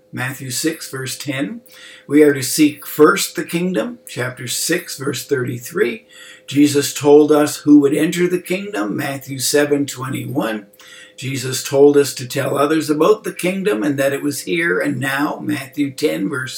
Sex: male